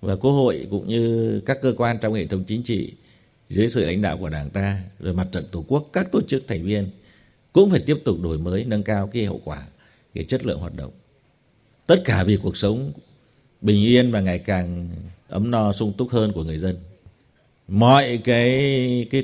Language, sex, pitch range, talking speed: Vietnamese, male, 100-130 Hz, 210 wpm